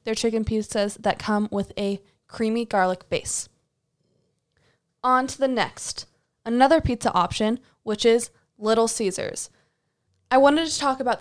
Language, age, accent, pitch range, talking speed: English, 20-39, American, 210-265 Hz, 140 wpm